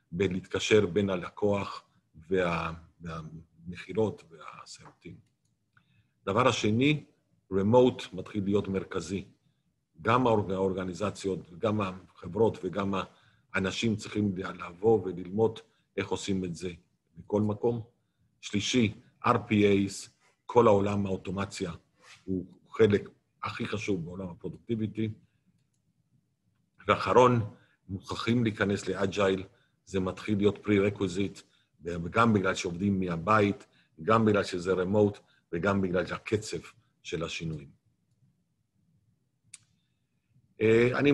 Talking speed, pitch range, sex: 90 wpm, 95-110 Hz, male